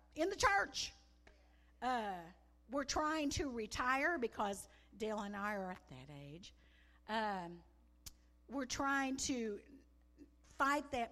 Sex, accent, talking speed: female, American, 120 wpm